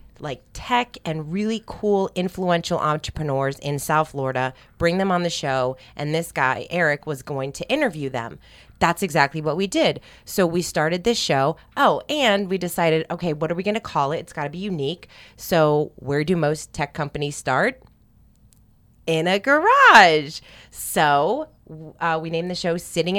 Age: 30-49